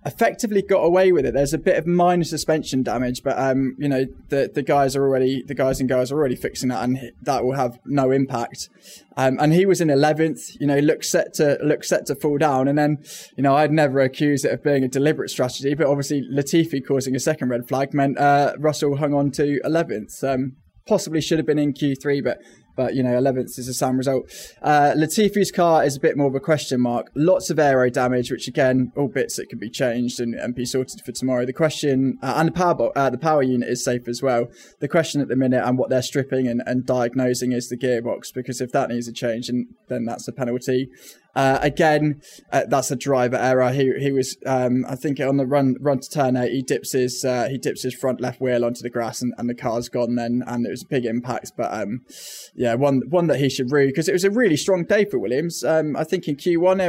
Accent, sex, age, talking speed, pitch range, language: British, male, 10-29, 245 wpm, 125-150 Hz, English